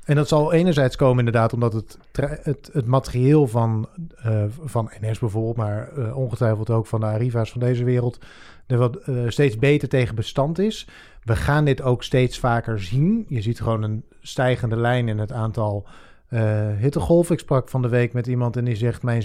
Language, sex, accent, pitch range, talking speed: Dutch, male, Dutch, 120-150 Hz, 185 wpm